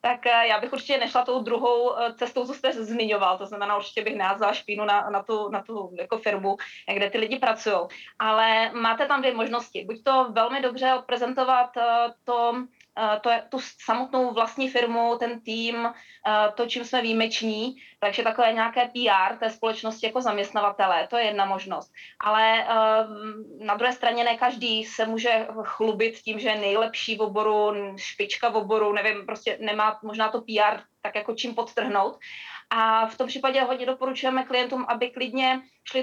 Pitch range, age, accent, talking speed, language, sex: 215-240 Hz, 30-49, native, 170 wpm, Czech, female